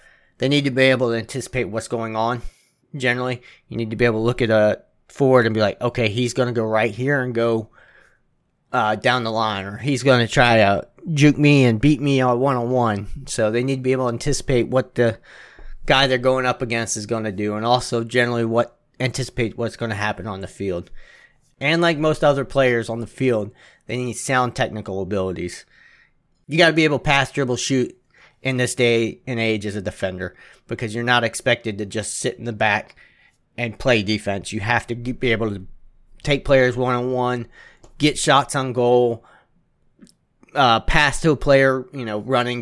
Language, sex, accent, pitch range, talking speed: English, male, American, 110-130 Hz, 210 wpm